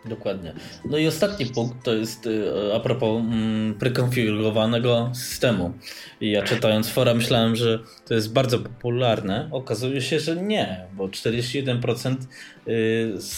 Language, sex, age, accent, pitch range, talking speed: Polish, male, 20-39, native, 105-120 Hz, 125 wpm